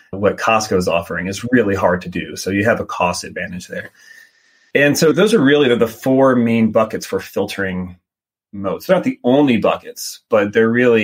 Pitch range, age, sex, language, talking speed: 95-115 Hz, 30-49, male, English, 200 wpm